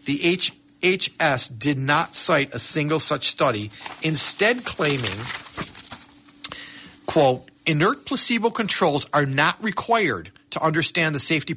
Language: English